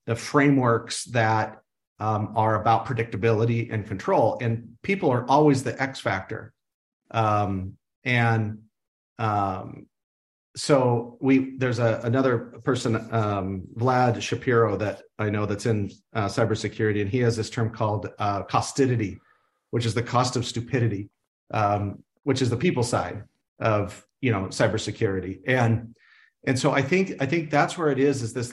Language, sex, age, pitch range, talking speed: English, male, 40-59, 110-135 Hz, 150 wpm